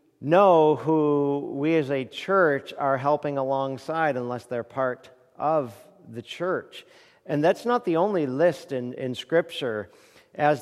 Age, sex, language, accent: 50-69, male, English, American